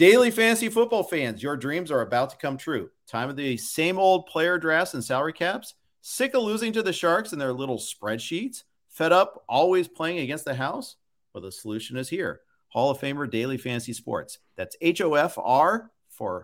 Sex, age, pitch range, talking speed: male, 50-69, 125-185 Hz, 190 wpm